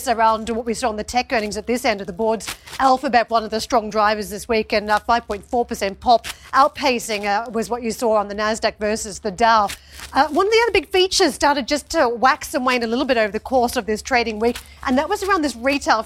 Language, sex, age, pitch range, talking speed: English, female, 40-59, 225-265 Hz, 245 wpm